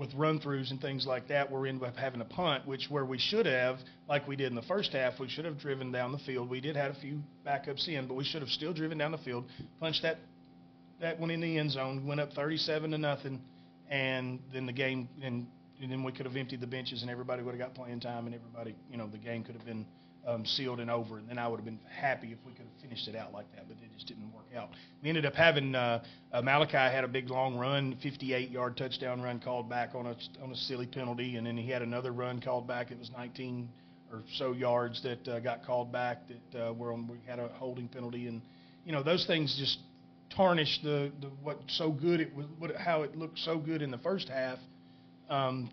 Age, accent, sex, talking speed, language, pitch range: 30-49, American, male, 250 wpm, English, 120-140 Hz